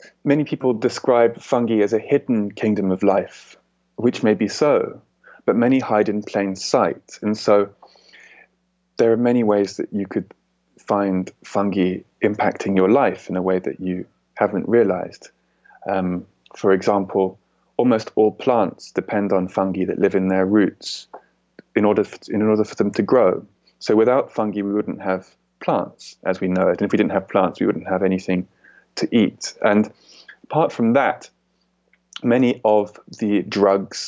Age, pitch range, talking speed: 20-39, 95-115 Hz, 165 wpm